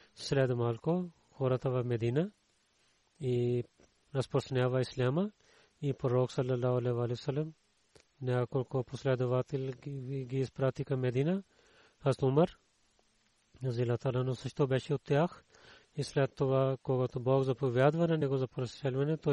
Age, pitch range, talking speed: 40-59, 125-145 Hz, 110 wpm